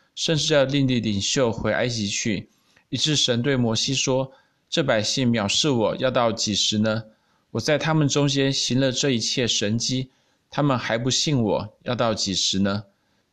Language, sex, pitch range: Chinese, male, 110-140 Hz